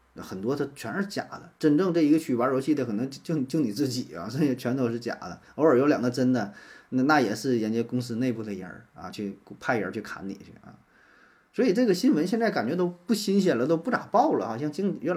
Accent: native